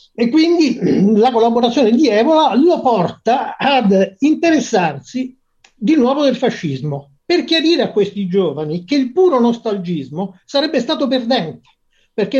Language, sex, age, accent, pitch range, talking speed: Italian, male, 50-69, native, 195-260 Hz, 130 wpm